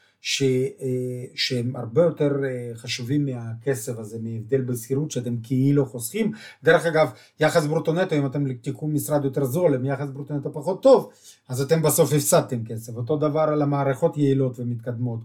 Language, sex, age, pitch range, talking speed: Hebrew, male, 30-49, 120-150 Hz, 150 wpm